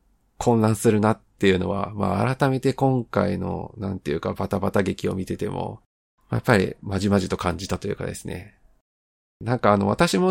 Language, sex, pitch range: Japanese, male, 95-125 Hz